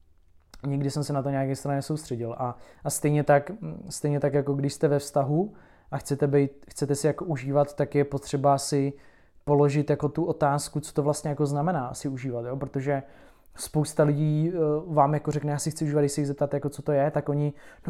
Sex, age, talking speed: male, 20-39, 210 wpm